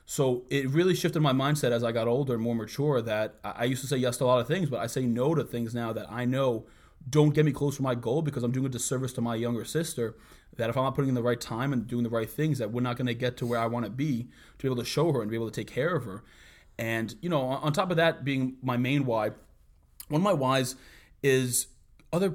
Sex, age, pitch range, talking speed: male, 20-39, 120-150 Hz, 285 wpm